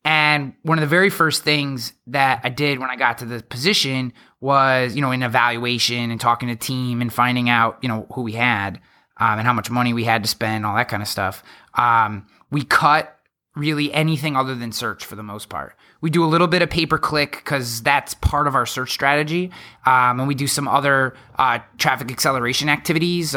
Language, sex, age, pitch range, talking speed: English, male, 20-39, 120-155 Hz, 215 wpm